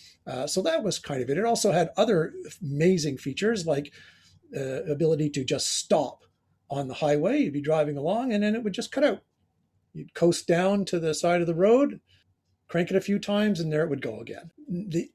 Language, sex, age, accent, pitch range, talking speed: English, male, 40-59, American, 140-190 Hz, 215 wpm